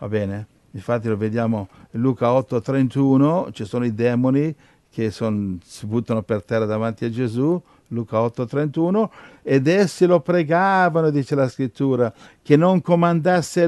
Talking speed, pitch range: 145 wpm, 110-140 Hz